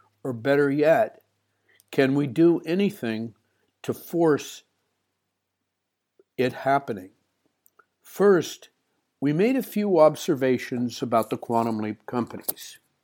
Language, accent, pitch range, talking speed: English, American, 110-140 Hz, 100 wpm